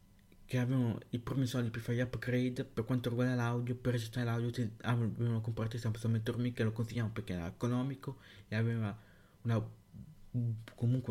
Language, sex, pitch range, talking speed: Italian, male, 105-120 Hz, 155 wpm